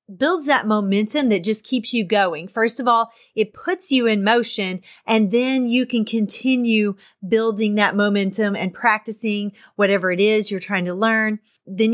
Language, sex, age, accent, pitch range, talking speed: English, female, 30-49, American, 205-255 Hz, 170 wpm